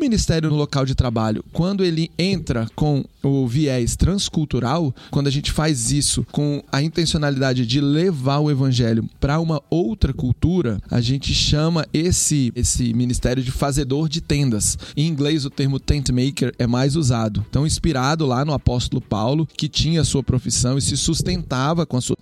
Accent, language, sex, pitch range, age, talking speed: Brazilian, Portuguese, male, 130-165 Hz, 20-39, 170 wpm